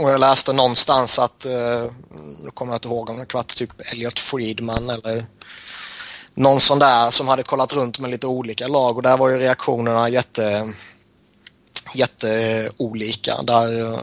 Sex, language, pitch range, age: male, Swedish, 115-130 Hz, 20-39